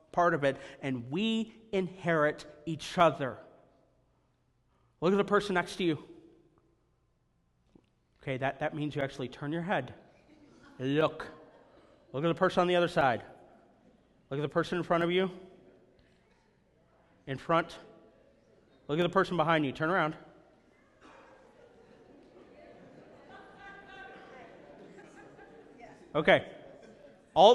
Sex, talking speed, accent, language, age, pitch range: male, 115 wpm, American, English, 40-59, 155-260 Hz